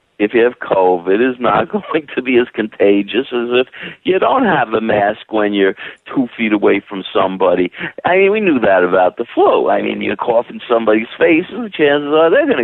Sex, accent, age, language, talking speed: male, American, 60-79, English, 225 wpm